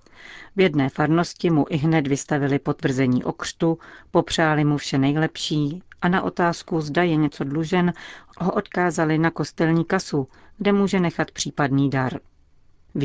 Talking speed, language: 145 wpm, Czech